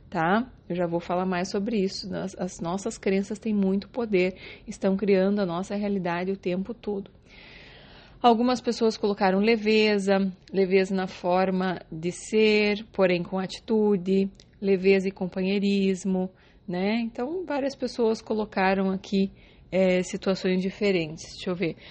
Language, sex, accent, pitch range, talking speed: Portuguese, female, Brazilian, 185-210 Hz, 135 wpm